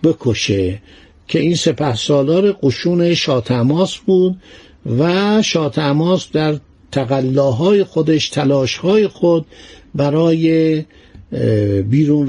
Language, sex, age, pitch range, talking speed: Persian, male, 60-79, 135-185 Hz, 85 wpm